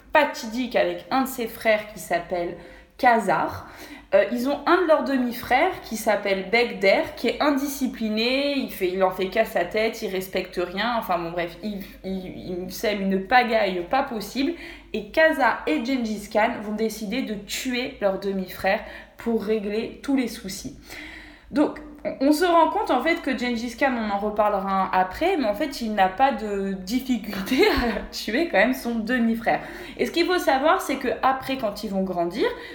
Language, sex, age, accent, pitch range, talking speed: French, female, 20-39, French, 190-260 Hz, 180 wpm